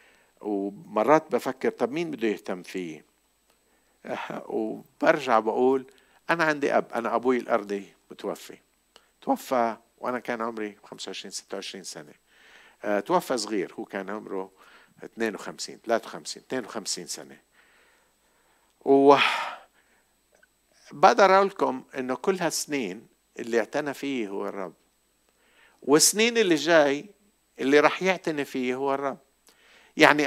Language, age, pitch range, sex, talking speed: Arabic, 50-69, 105-145 Hz, male, 105 wpm